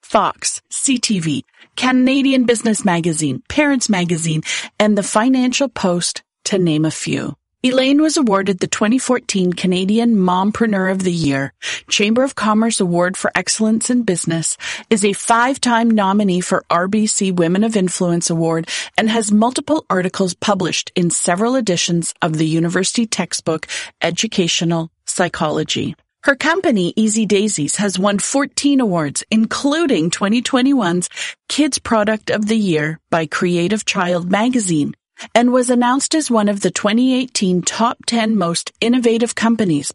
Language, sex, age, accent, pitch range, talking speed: English, female, 40-59, American, 175-235 Hz, 135 wpm